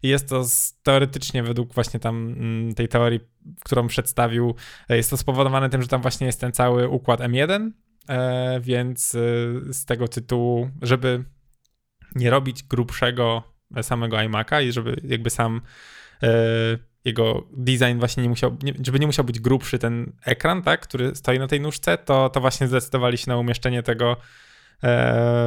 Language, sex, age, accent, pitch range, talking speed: Polish, male, 10-29, native, 120-135 Hz, 165 wpm